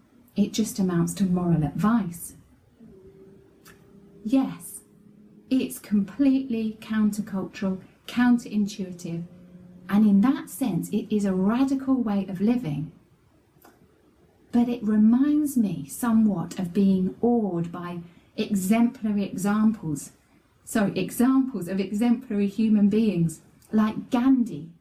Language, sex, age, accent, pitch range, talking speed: English, female, 30-49, British, 185-235 Hz, 100 wpm